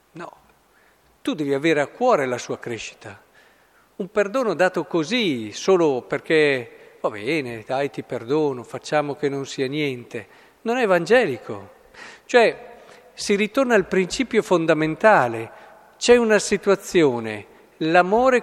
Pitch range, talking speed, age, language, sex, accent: 140-200 Hz, 120 wpm, 50-69, Italian, male, native